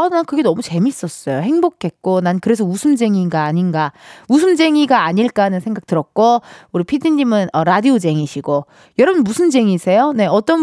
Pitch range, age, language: 185-300 Hz, 20-39, Korean